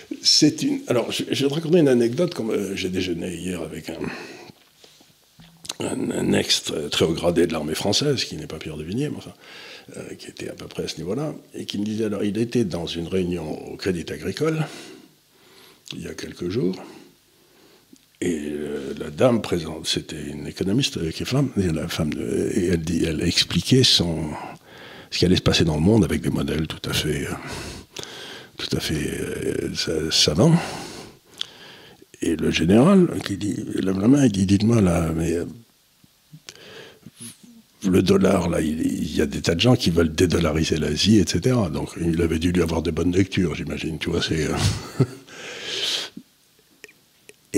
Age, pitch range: 60-79, 85-120 Hz